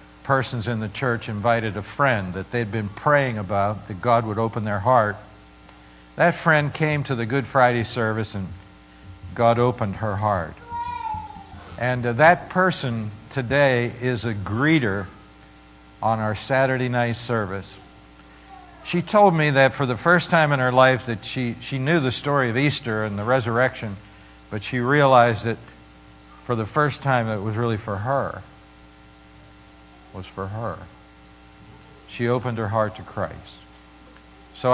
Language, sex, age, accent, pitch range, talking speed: English, male, 60-79, American, 100-135 Hz, 155 wpm